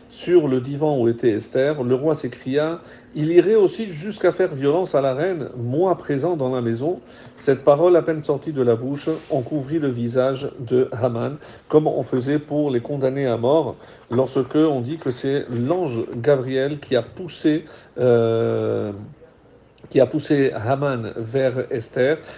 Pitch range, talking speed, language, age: 125-150 Hz, 165 wpm, French, 50-69